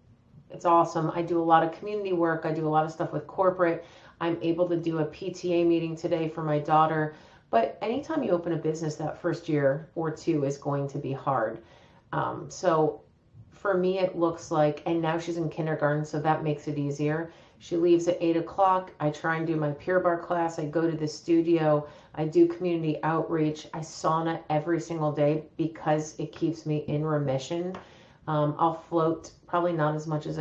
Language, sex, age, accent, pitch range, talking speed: English, female, 30-49, American, 150-170 Hz, 200 wpm